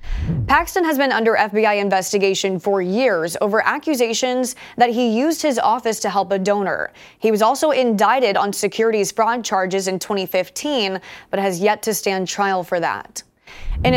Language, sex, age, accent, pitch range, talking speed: English, female, 20-39, American, 195-240 Hz, 165 wpm